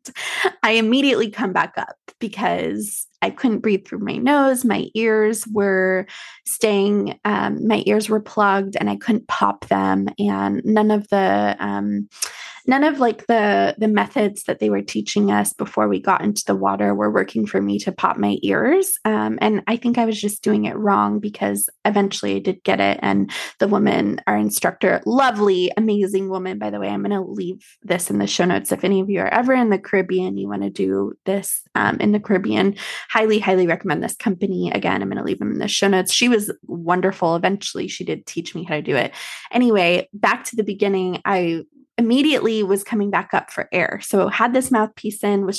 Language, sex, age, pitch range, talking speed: English, female, 20-39, 165-220 Hz, 205 wpm